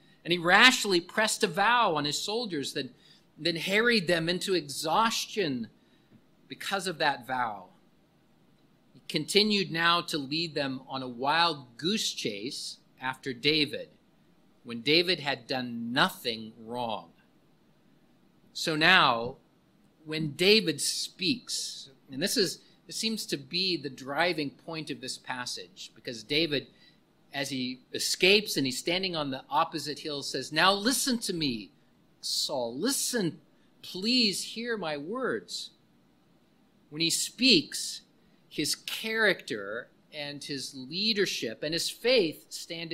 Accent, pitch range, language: American, 145-200 Hz, English